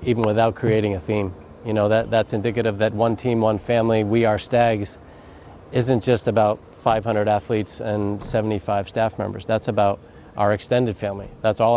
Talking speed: 170 wpm